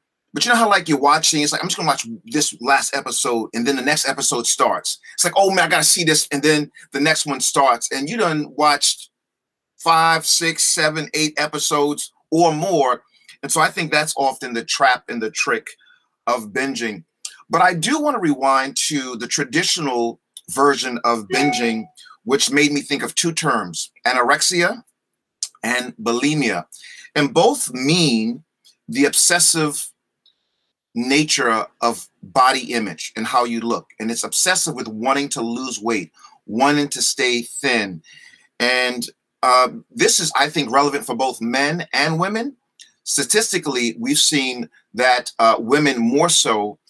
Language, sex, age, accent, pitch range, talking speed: English, male, 40-59, American, 125-165 Hz, 160 wpm